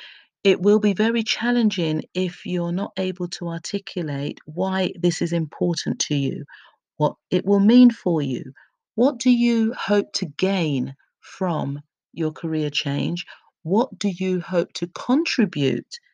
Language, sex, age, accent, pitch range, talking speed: English, female, 50-69, British, 160-205 Hz, 145 wpm